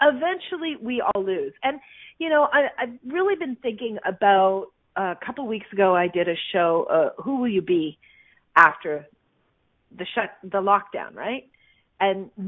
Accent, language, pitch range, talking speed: American, English, 200-280 Hz, 170 wpm